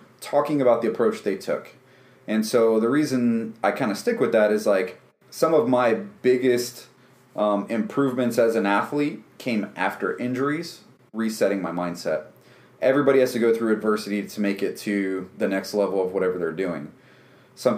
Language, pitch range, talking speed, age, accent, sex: English, 105-125 Hz, 170 wpm, 30-49, American, male